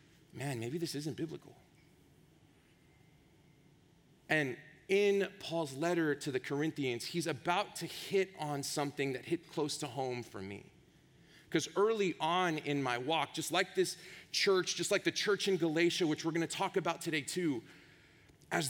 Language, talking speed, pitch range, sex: English, 160 wpm, 155-195 Hz, male